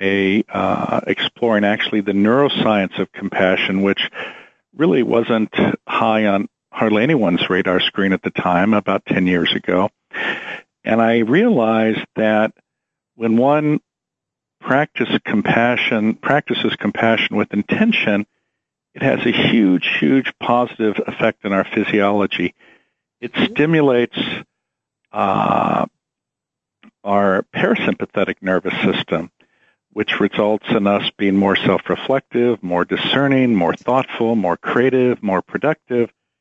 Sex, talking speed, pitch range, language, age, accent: male, 105 wpm, 100-115 Hz, English, 50-69, American